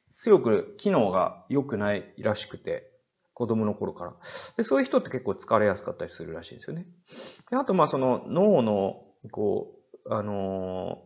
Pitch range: 95-155 Hz